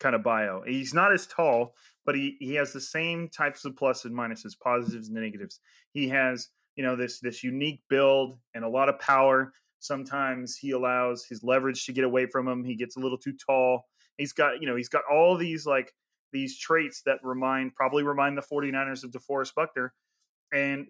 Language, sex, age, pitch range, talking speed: English, male, 30-49, 125-150 Hz, 205 wpm